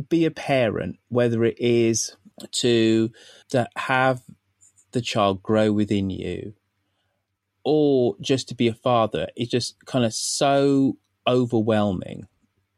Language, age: English, 30-49